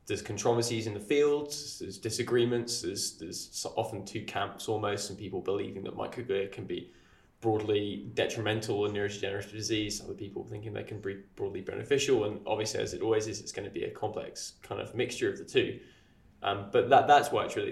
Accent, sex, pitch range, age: British, male, 105-145 Hz, 10-29